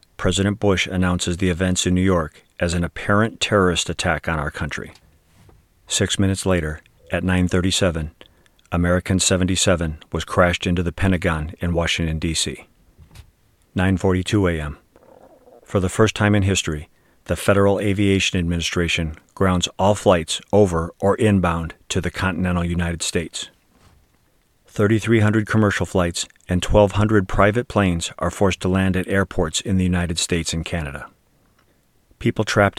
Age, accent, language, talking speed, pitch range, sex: 40-59, American, English, 135 wpm, 85-100 Hz, male